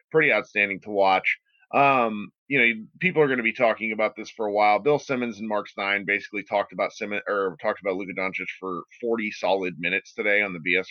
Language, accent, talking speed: English, American, 220 wpm